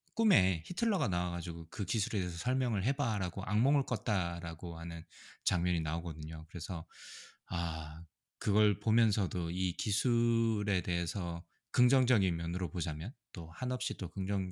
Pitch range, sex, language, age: 90-115 Hz, male, Korean, 20-39